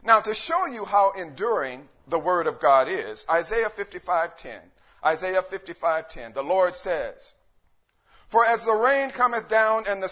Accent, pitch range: American, 180-225 Hz